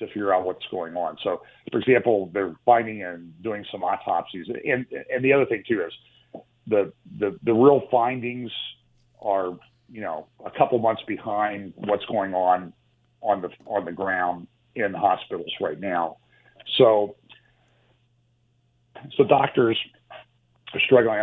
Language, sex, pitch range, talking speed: English, male, 100-125 Hz, 145 wpm